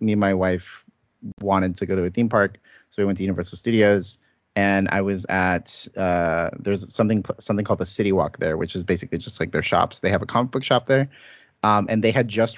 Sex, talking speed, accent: male, 235 wpm, American